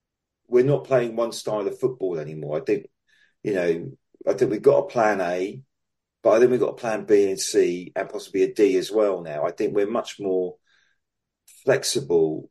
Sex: male